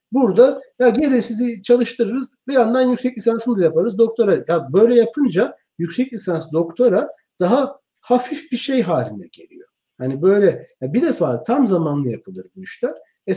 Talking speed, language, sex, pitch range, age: 155 wpm, Turkish, male, 155-235 Hz, 60-79